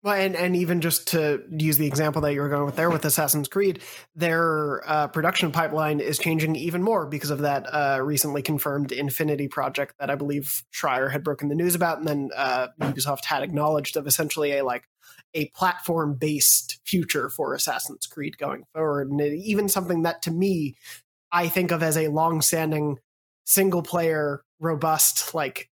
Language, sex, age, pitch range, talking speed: English, male, 20-39, 145-170 Hz, 180 wpm